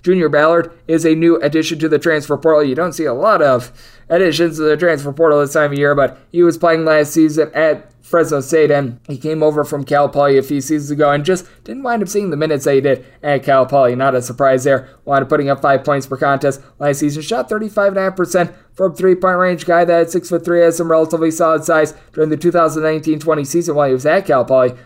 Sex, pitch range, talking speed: male, 140-165 Hz, 230 wpm